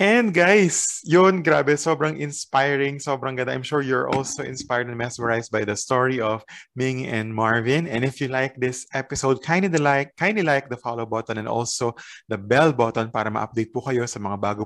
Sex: male